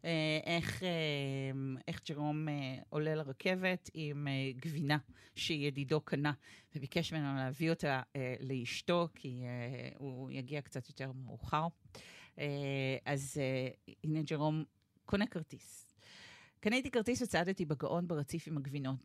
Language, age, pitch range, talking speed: Hebrew, 40-59, 135-170 Hz, 110 wpm